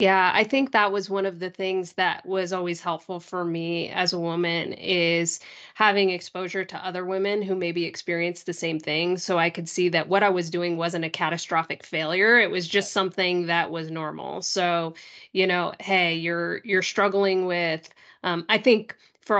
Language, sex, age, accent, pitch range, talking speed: English, female, 20-39, American, 170-190 Hz, 190 wpm